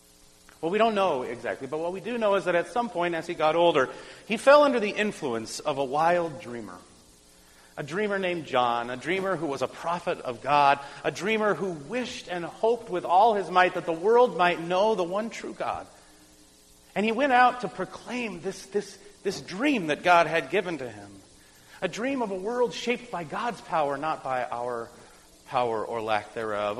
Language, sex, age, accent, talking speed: English, male, 40-59, American, 205 wpm